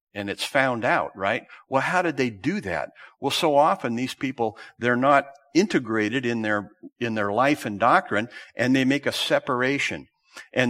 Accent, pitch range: American, 105-135 Hz